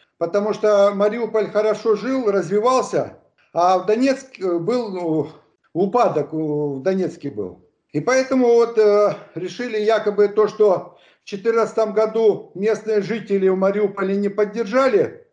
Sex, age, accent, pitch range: male, 50-69, native, 190-230 Hz